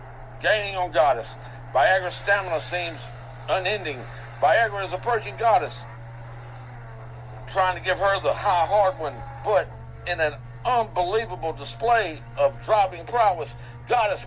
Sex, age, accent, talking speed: male, 60-79, American, 120 wpm